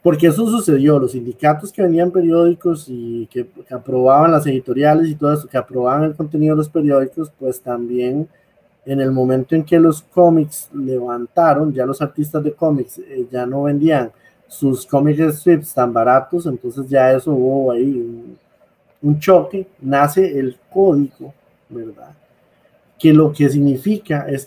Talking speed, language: 155 wpm, Spanish